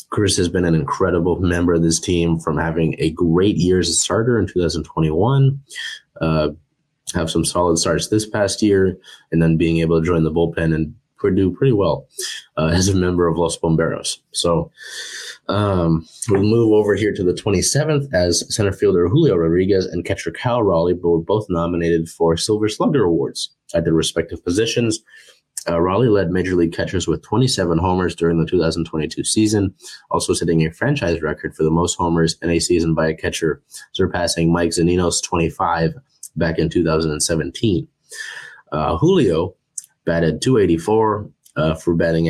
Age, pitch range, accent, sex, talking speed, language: 20-39, 80-95 Hz, American, male, 165 wpm, English